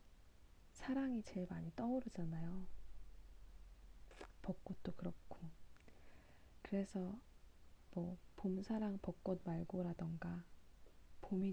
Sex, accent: female, native